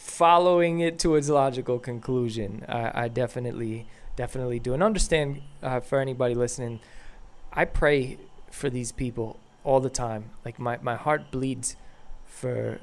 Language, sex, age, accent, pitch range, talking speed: English, male, 20-39, American, 120-145 Hz, 145 wpm